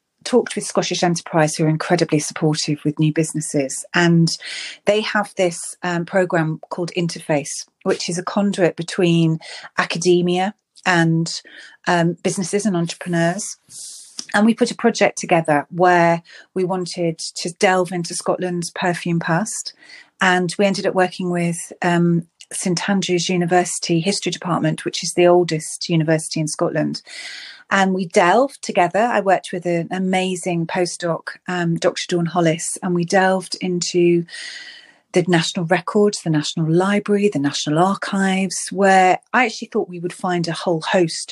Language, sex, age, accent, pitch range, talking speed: English, female, 30-49, British, 170-195 Hz, 145 wpm